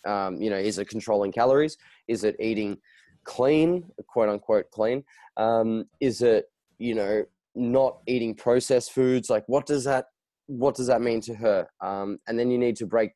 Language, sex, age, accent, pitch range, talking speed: English, male, 20-39, Australian, 100-120 Hz, 185 wpm